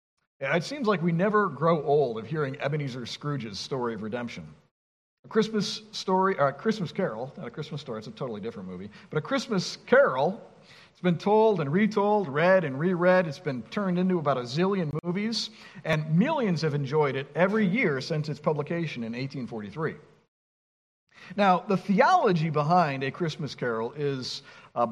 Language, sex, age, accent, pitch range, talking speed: English, male, 50-69, American, 140-195 Hz, 170 wpm